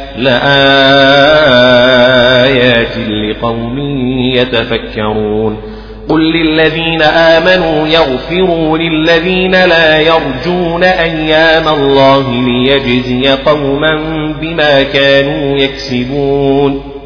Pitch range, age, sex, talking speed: 135-160 Hz, 40-59, male, 60 wpm